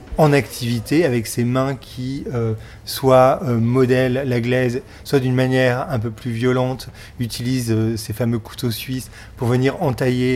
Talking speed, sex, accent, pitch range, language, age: 160 wpm, male, French, 115-130 Hz, French, 30-49